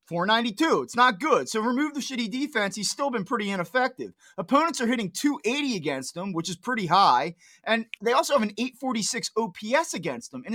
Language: English